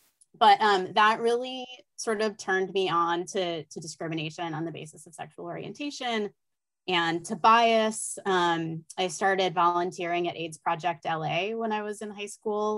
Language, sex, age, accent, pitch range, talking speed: English, female, 20-39, American, 165-205 Hz, 165 wpm